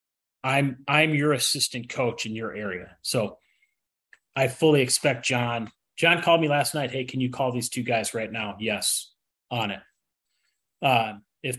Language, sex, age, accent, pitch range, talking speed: English, male, 30-49, American, 120-150 Hz, 165 wpm